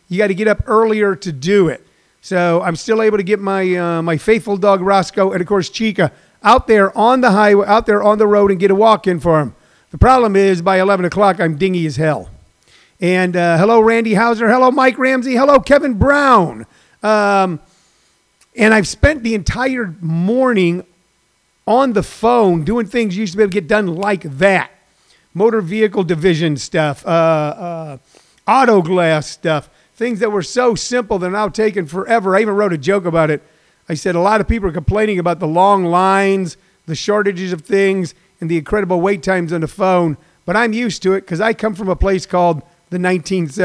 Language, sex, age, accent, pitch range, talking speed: English, male, 50-69, American, 175-215 Hz, 205 wpm